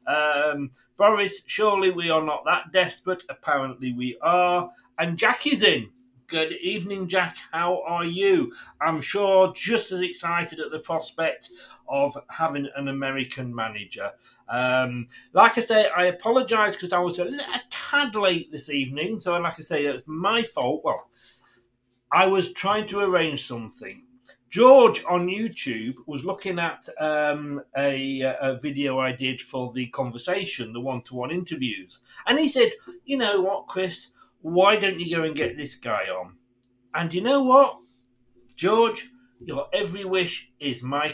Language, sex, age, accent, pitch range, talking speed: English, male, 40-59, British, 135-205 Hz, 155 wpm